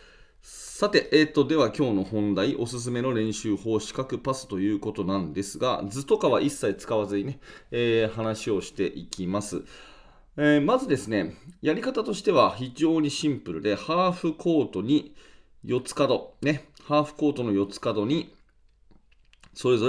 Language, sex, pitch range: Japanese, male, 100-150 Hz